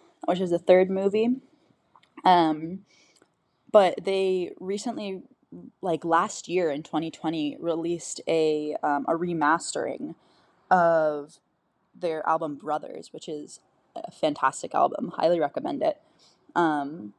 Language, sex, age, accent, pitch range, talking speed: English, female, 10-29, American, 155-190 Hz, 110 wpm